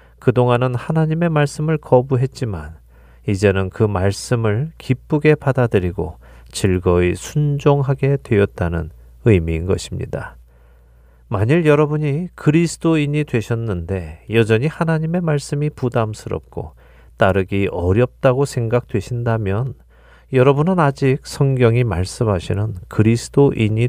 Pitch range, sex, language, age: 95-135 Hz, male, Korean, 40-59